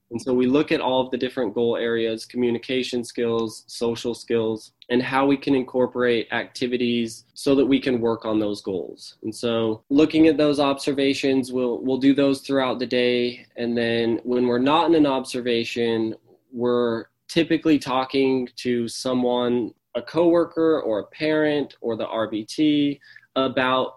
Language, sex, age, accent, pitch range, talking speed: English, male, 20-39, American, 115-130 Hz, 160 wpm